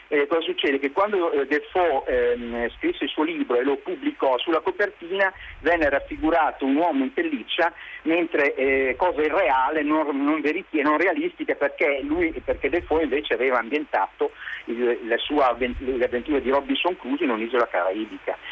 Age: 50-69